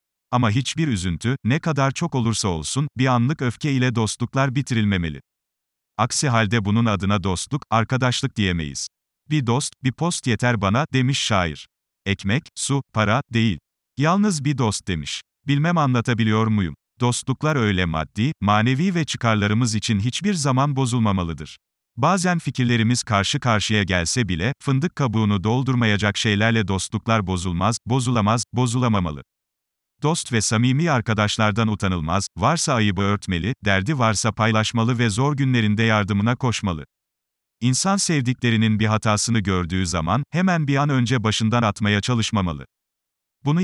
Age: 40-59